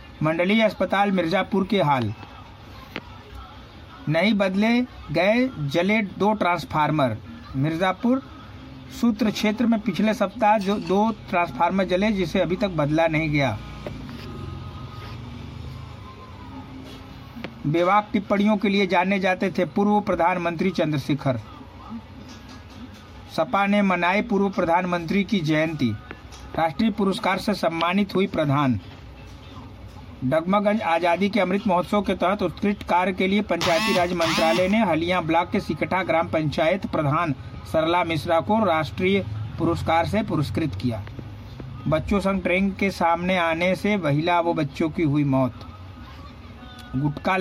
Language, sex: Hindi, male